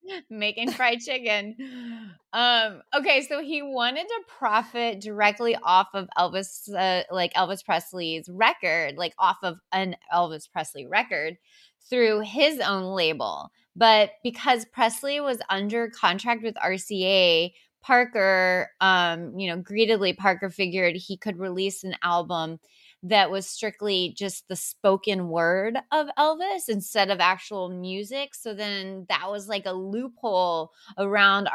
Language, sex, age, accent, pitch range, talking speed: English, female, 20-39, American, 190-240 Hz, 135 wpm